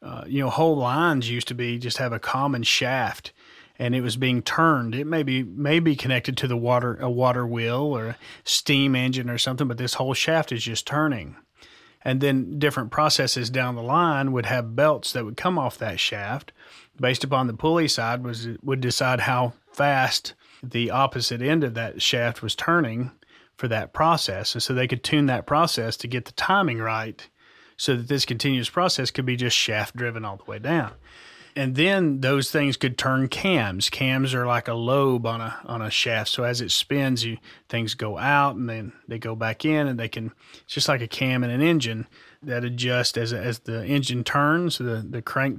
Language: English